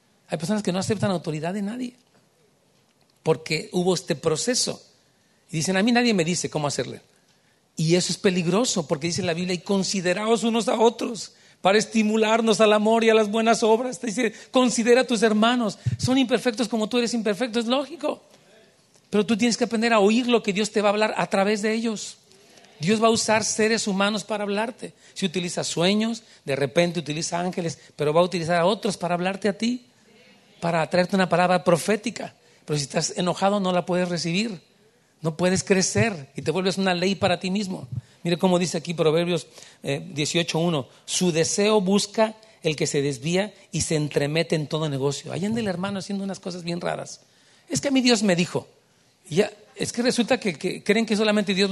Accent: Mexican